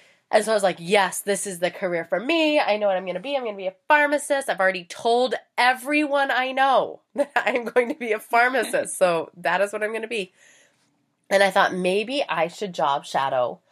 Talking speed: 235 wpm